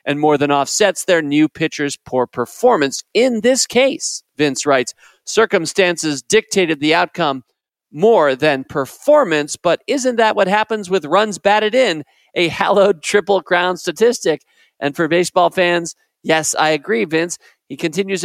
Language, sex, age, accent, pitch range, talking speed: English, male, 40-59, American, 150-205 Hz, 145 wpm